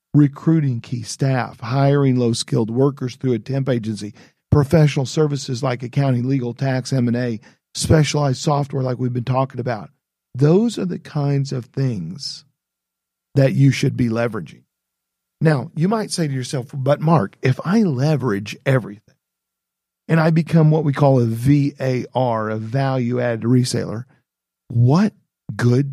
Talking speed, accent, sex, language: 140 wpm, American, male, English